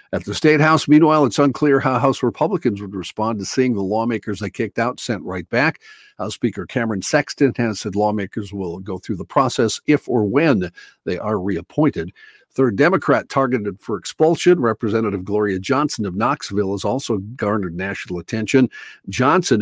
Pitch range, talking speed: 105-140 Hz, 170 wpm